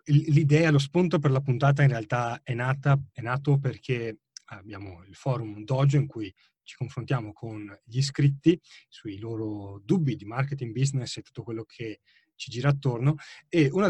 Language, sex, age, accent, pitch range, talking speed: Italian, male, 30-49, native, 115-145 Hz, 170 wpm